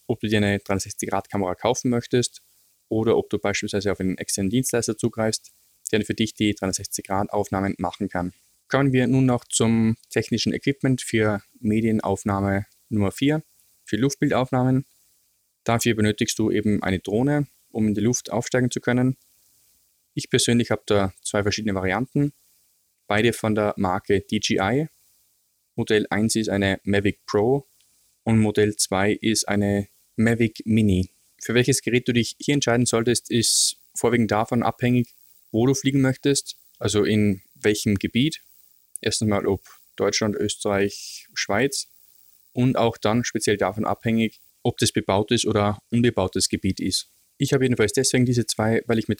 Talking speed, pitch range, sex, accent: 150 wpm, 100-120 Hz, male, German